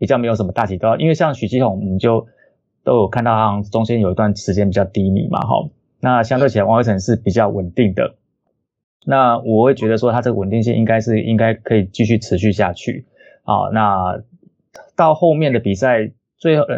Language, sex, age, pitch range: Chinese, male, 20-39, 105-135 Hz